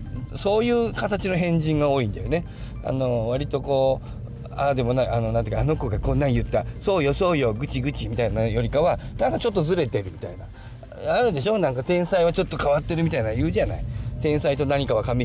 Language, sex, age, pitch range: Japanese, male, 40-59, 110-140 Hz